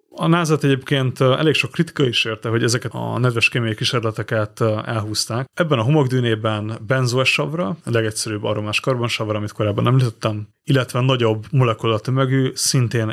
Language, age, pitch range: Hungarian, 30-49, 110-130 Hz